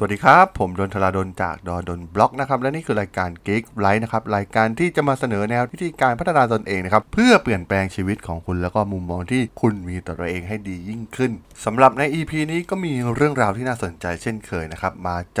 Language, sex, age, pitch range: Thai, male, 20-39, 100-140 Hz